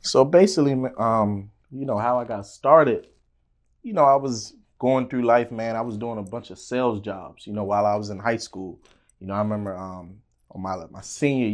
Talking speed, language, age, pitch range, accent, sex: 220 wpm, English, 20-39, 100-115 Hz, American, male